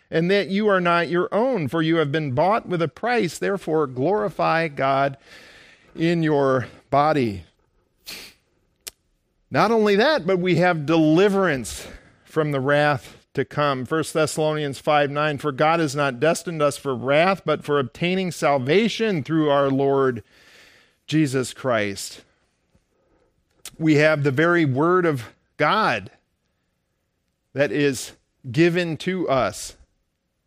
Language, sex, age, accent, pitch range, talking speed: English, male, 50-69, American, 135-165 Hz, 130 wpm